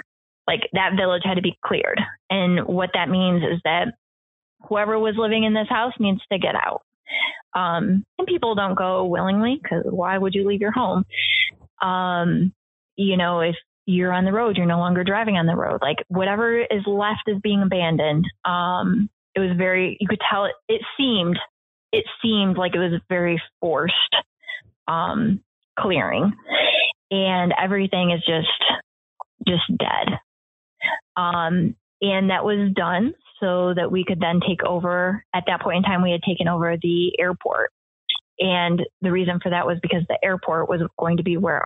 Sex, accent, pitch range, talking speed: female, American, 175-210 Hz, 175 wpm